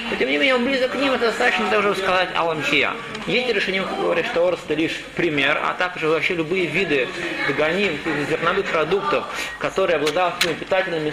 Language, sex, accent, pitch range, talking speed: Russian, male, native, 170-230 Hz, 175 wpm